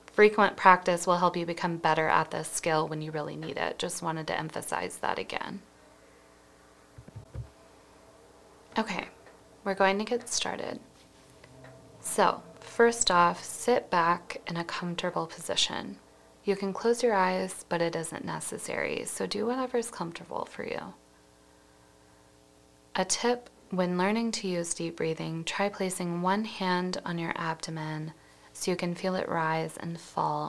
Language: English